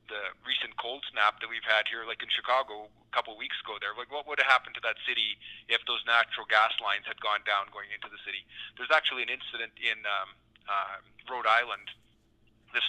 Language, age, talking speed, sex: English, 40-59, 220 wpm, male